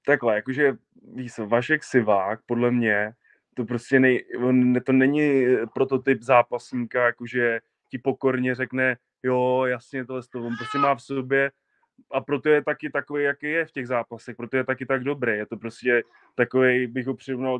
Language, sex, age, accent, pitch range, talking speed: Czech, male, 20-39, native, 125-140 Hz, 165 wpm